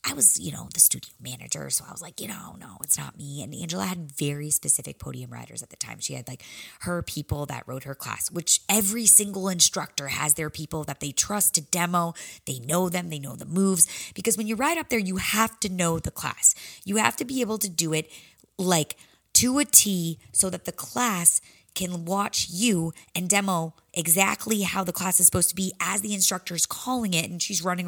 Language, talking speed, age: English, 225 wpm, 20-39